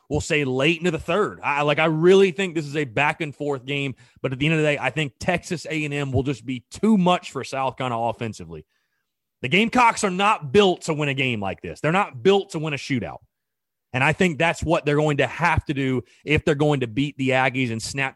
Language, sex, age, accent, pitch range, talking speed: English, male, 30-49, American, 130-185 Hz, 245 wpm